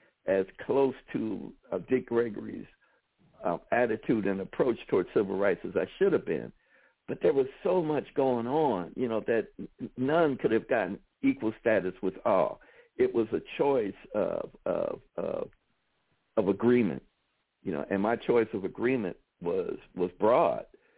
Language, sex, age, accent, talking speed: English, male, 60-79, American, 155 wpm